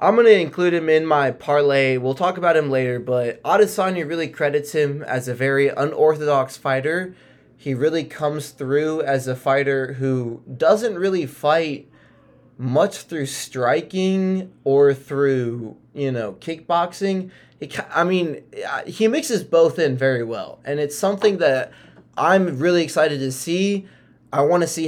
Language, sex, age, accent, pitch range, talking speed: English, male, 20-39, American, 130-165 Hz, 150 wpm